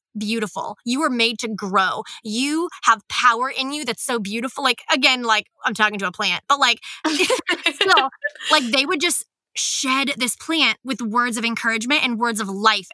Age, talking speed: 20-39, 180 wpm